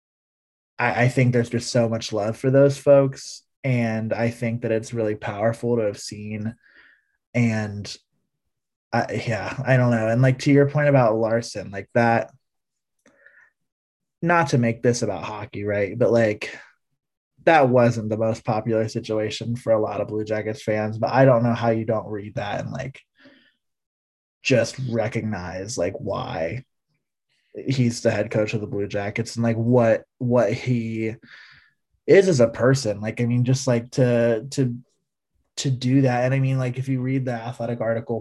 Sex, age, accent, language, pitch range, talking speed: male, 20-39, American, English, 110-125 Hz, 170 wpm